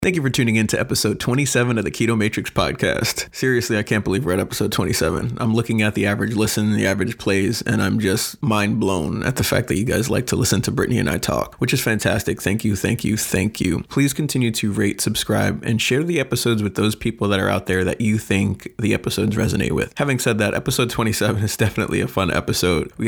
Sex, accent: male, American